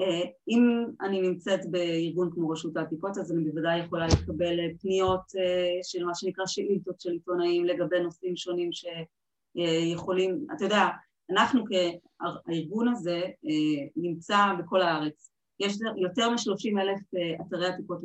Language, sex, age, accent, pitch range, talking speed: Hebrew, female, 30-49, native, 175-195 Hz, 125 wpm